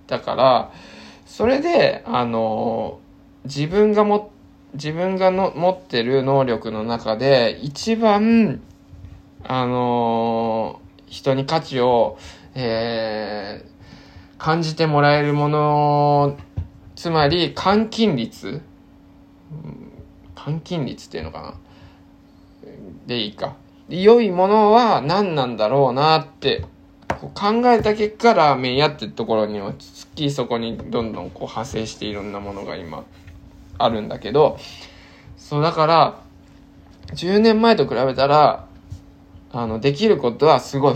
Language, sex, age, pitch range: Japanese, male, 20-39, 110-155 Hz